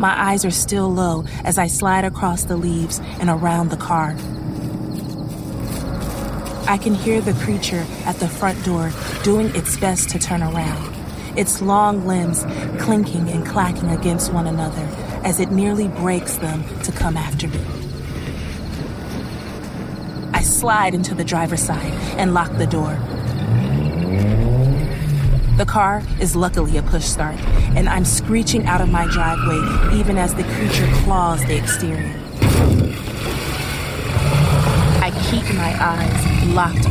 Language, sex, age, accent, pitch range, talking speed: English, female, 30-49, American, 145-185 Hz, 135 wpm